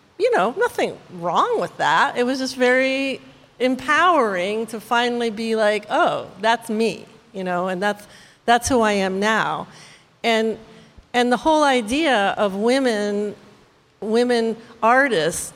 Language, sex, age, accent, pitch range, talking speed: English, female, 50-69, American, 195-245 Hz, 140 wpm